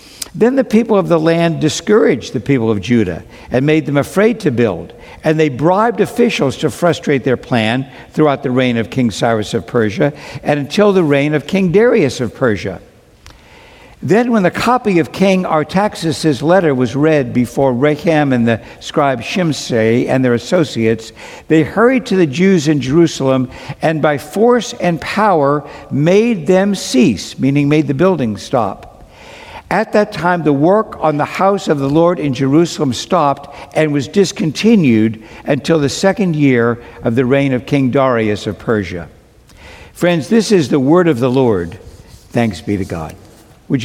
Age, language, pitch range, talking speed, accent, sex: 60-79, English, 125-175 Hz, 170 wpm, American, male